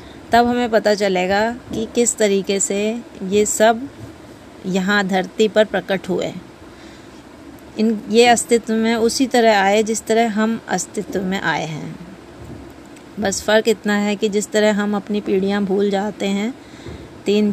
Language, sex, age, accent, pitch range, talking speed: Hindi, female, 20-39, native, 195-230 Hz, 145 wpm